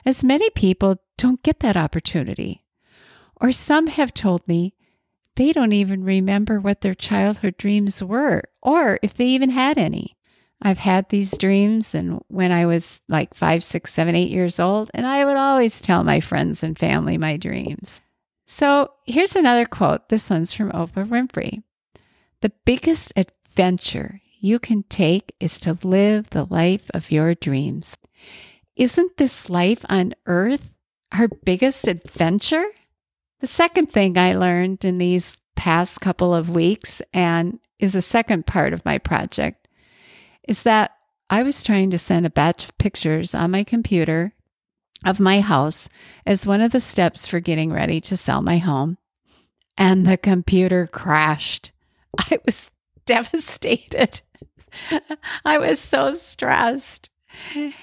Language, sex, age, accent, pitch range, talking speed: English, female, 50-69, American, 175-240 Hz, 150 wpm